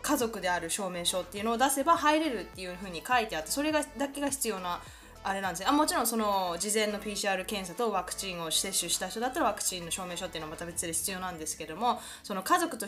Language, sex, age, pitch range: Japanese, female, 20-39, 185-275 Hz